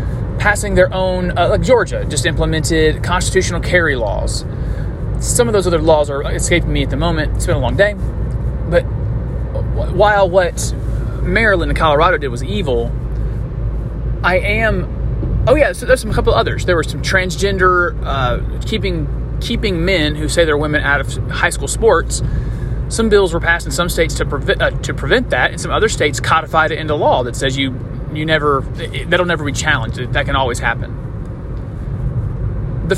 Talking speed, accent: 175 wpm, American